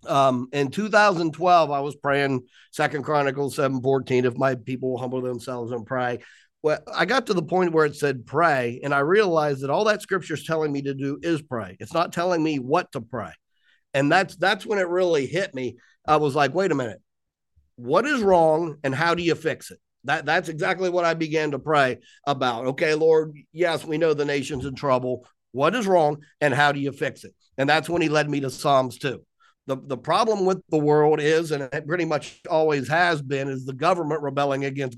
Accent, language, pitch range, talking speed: American, English, 135-160 Hz, 215 wpm